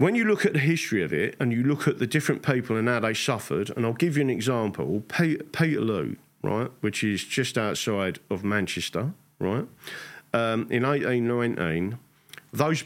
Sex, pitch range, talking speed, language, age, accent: male, 115-145 Hz, 180 wpm, English, 40-59, British